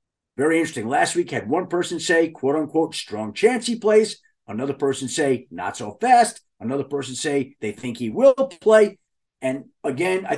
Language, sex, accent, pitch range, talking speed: English, male, American, 145-190 Hz, 180 wpm